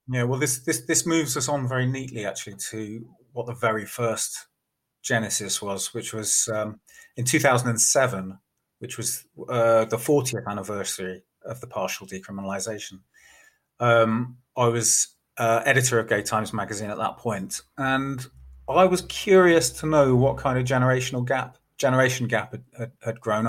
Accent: British